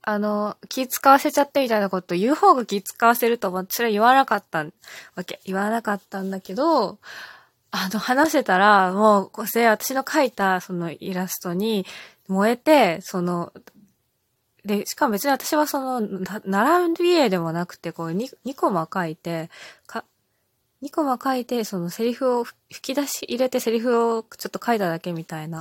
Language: Japanese